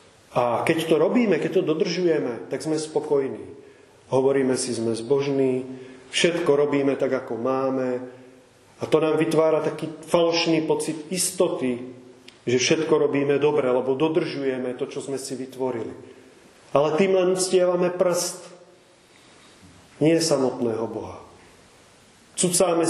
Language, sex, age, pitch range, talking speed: Czech, male, 30-49, 125-160 Hz, 125 wpm